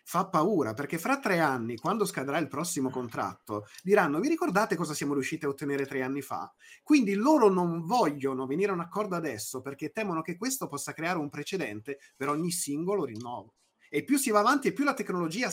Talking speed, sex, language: 200 wpm, male, Italian